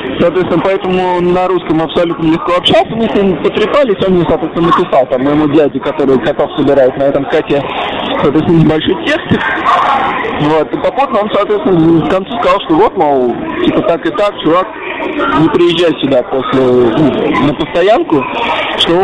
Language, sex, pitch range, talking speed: Russian, male, 140-175 Hz, 160 wpm